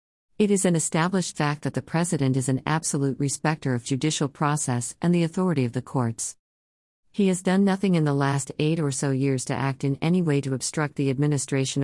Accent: American